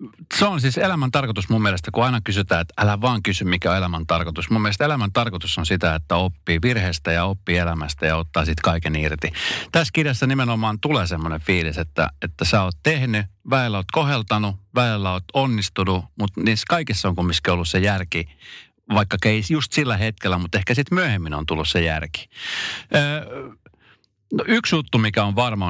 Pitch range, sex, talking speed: 85-115 Hz, male, 185 wpm